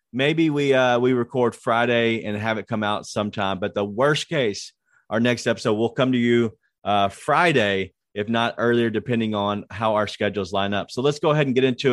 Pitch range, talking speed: 110-145 Hz, 210 wpm